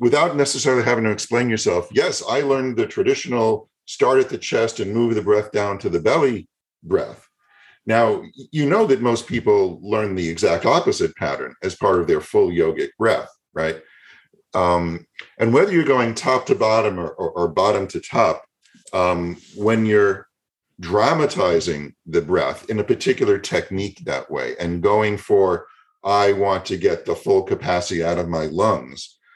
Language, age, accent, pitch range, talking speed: English, 50-69, American, 85-135 Hz, 170 wpm